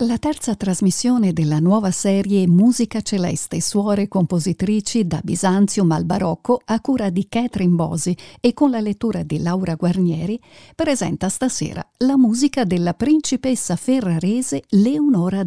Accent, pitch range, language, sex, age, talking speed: native, 180-245 Hz, Italian, female, 50-69, 130 wpm